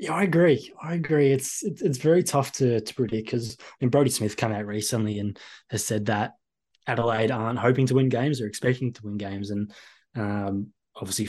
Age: 20-39